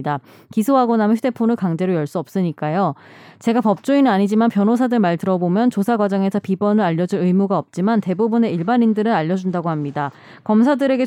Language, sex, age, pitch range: Korean, female, 20-39, 185-230 Hz